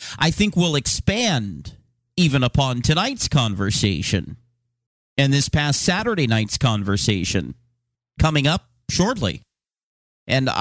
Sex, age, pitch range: male, 40-59, 120-150 Hz